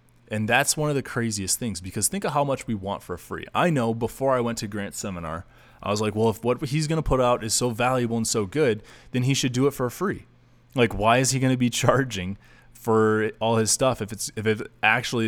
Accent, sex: American, male